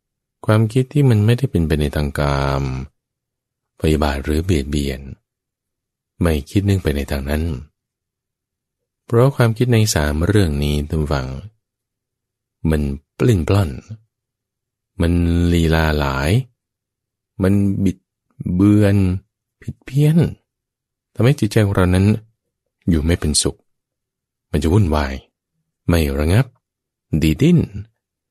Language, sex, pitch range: English, male, 75-115 Hz